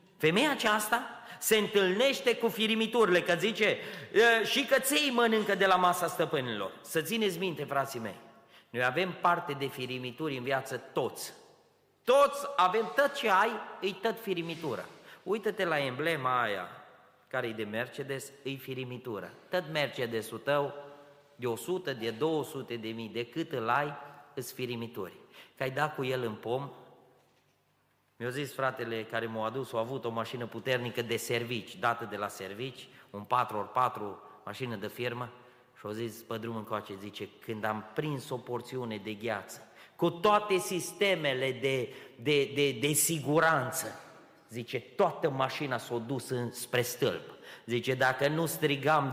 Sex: male